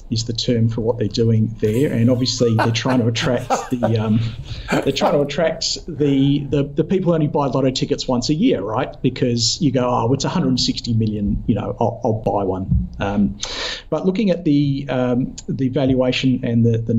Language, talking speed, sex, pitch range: English, 200 wpm, male, 110-130 Hz